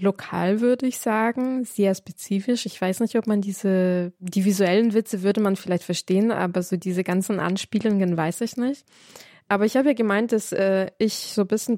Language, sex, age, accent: German, female, 20-39, German